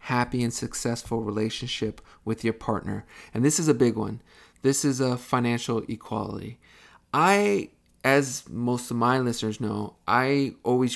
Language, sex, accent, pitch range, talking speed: English, male, American, 110-130 Hz, 150 wpm